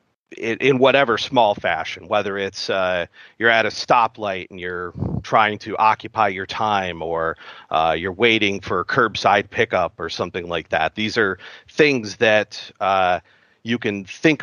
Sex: male